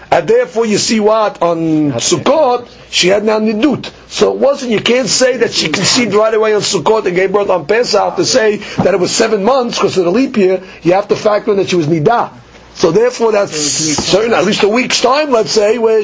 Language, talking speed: English, 230 wpm